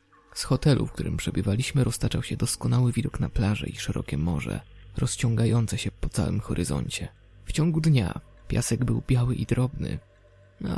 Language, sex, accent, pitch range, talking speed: Polish, male, native, 100-125 Hz, 155 wpm